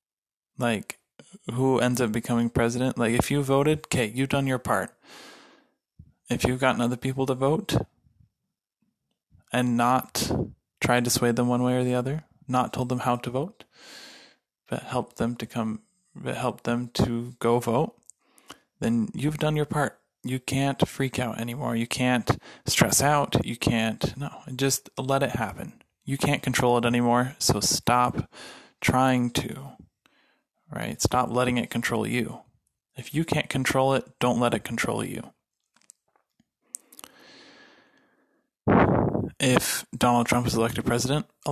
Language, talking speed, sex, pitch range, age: English, 150 wpm, male, 120-140 Hz, 20-39